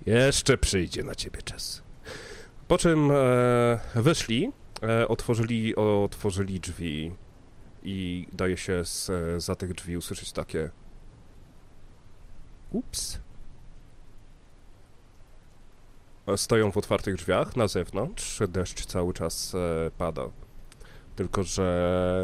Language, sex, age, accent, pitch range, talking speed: Polish, male, 30-49, native, 85-95 Hz, 95 wpm